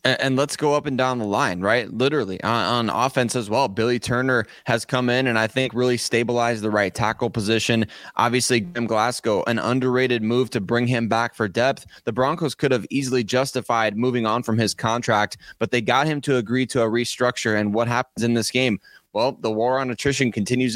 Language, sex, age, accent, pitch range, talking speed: English, male, 20-39, American, 115-135 Hz, 210 wpm